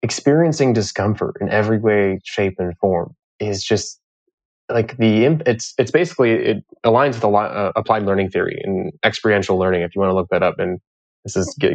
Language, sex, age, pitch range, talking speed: English, male, 20-39, 100-125 Hz, 195 wpm